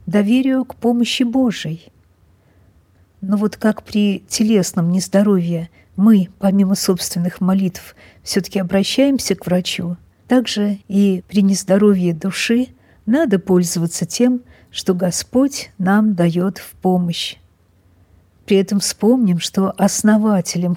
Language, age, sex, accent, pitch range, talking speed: Russian, 50-69, female, native, 180-220 Hz, 110 wpm